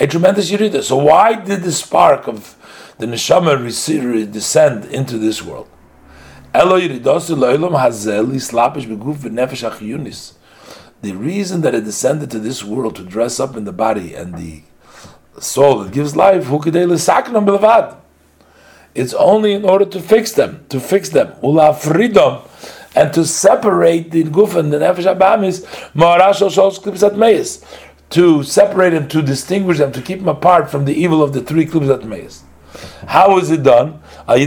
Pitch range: 115-175 Hz